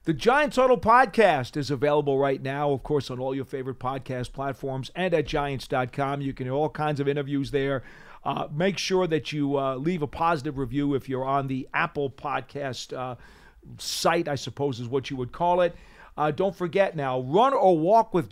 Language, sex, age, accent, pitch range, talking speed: English, male, 40-59, American, 140-185 Hz, 200 wpm